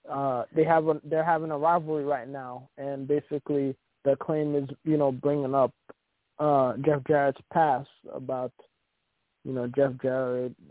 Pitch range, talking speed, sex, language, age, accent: 125-150 Hz, 155 wpm, male, English, 20-39, American